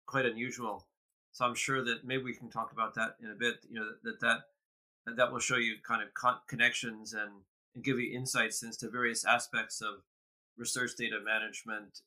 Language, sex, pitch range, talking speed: English, male, 110-130 Hz, 190 wpm